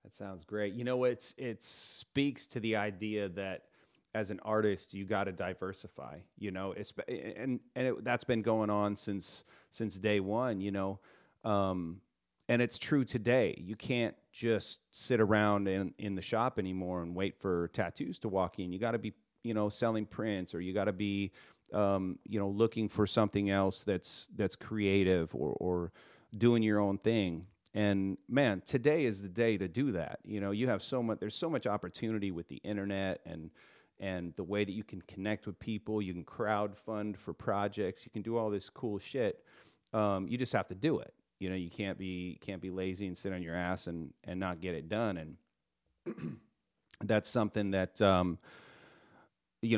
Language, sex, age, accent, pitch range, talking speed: English, male, 40-59, American, 95-110 Hz, 195 wpm